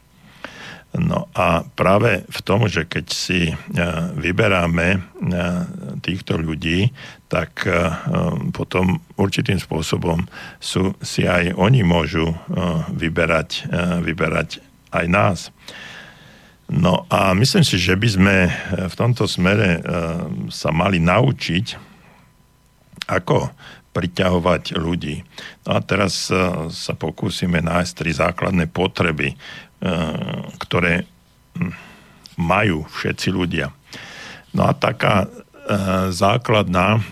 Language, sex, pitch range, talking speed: Slovak, male, 85-95 Hz, 90 wpm